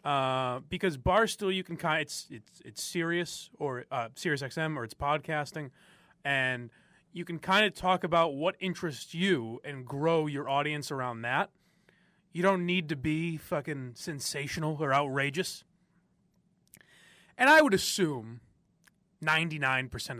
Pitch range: 140-190 Hz